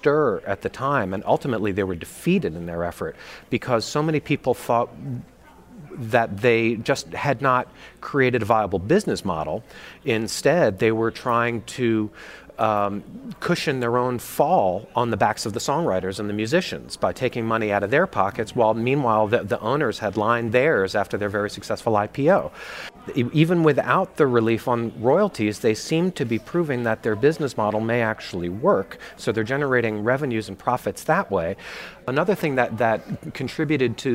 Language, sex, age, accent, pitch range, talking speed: English, male, 40-59, American, 105-125 Hz, 170 wpm